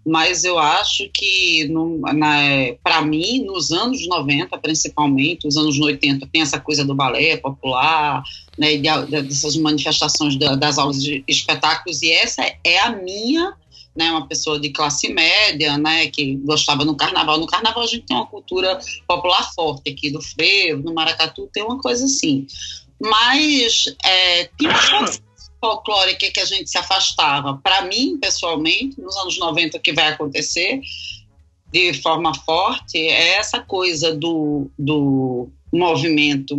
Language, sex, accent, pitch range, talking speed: Portuguese, female, Brazilian, 145-220 Hz, 155 wpm